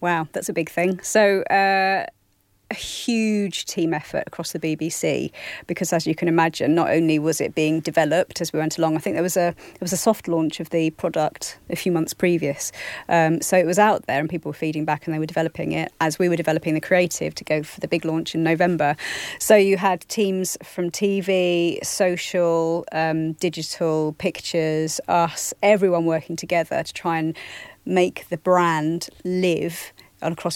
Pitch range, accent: 160-185 Hz, British